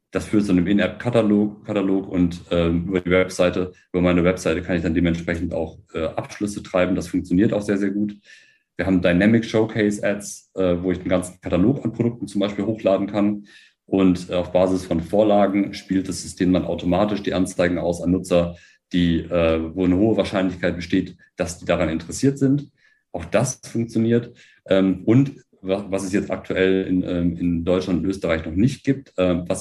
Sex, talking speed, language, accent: male, 190 wpm, German, German